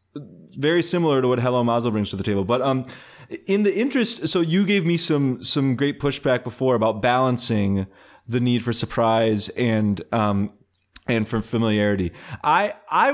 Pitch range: 120-160 Hz